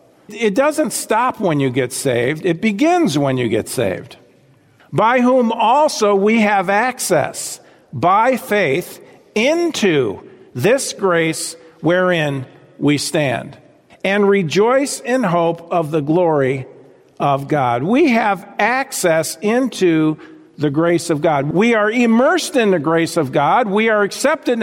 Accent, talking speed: American, 135 wpm